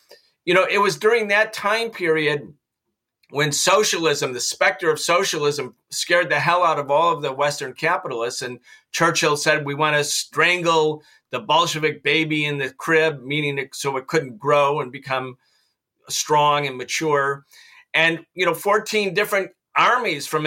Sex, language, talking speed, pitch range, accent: male, English, 160 wpm, 145-175 Hz, American